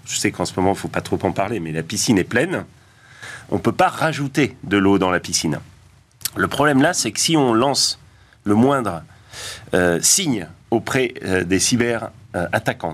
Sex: male